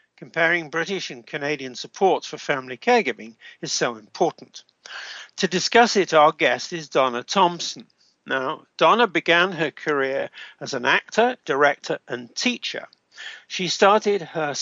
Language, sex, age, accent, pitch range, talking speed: English, male, 60-79, British, 150-195 Hz, 135 wpm